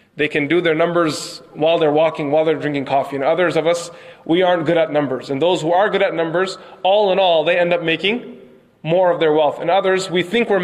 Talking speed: 250 wpm